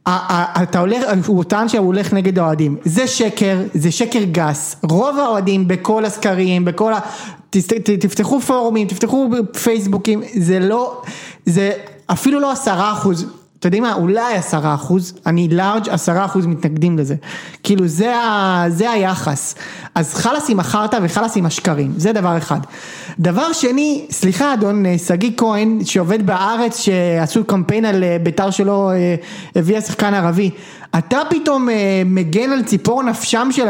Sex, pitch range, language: male, 185-235 Hz, Hebrew